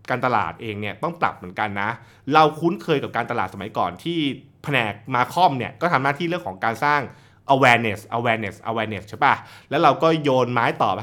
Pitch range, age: 110-145 Hz, 20-39